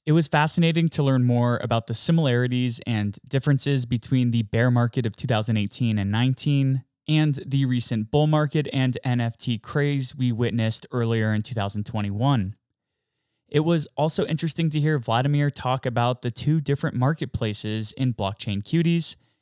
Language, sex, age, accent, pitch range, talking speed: English, male, 20-39, American, 115-145 Hz, 150 wpm